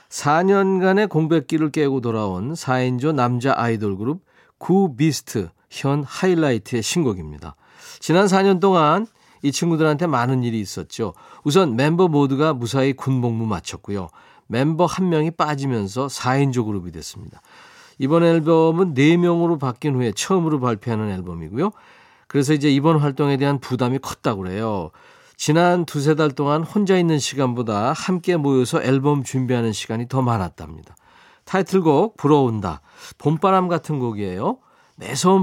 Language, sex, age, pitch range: Korean, male, 40-59, 115-165 Hz